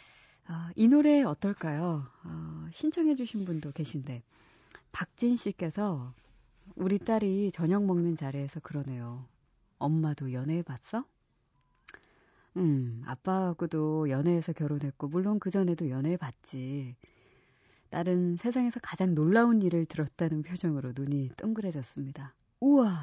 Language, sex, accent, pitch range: Korean, female, native, 140-190 Hz